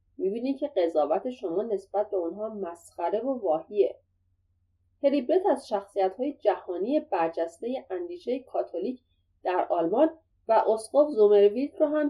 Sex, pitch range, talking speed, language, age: female, 185-285 Hz, 125 wpm, Persian, 30-49